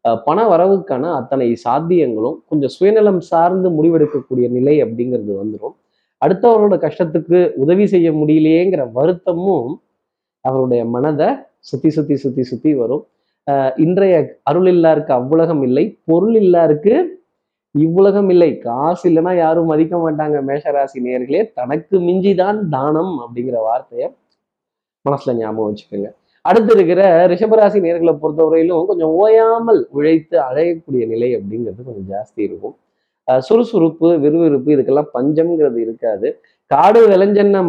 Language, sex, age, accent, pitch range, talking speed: Tamil, male, 20-39, native, 135-180 Hz, 115 wpm